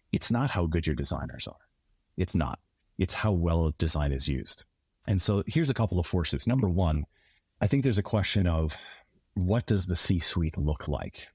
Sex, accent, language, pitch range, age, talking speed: male, American, English, 75-100 Hz, 30-49, 190 wpm